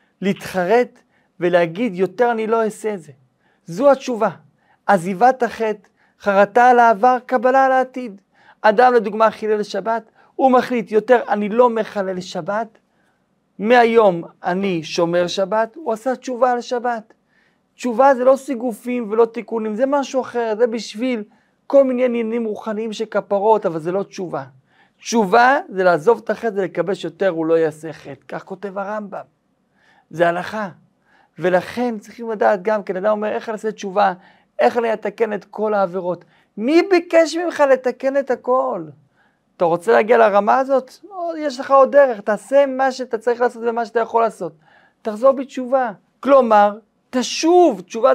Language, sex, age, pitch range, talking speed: Hebrew, male, 40-59, 200-255 Hz, 150 wpm